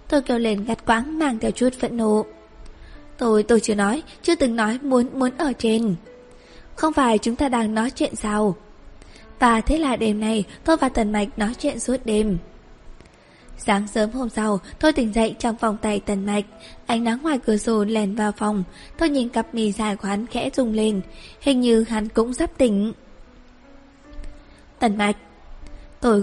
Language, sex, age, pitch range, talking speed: Vietnamese, female, 20-39, 210-260 Hz, 185 wpm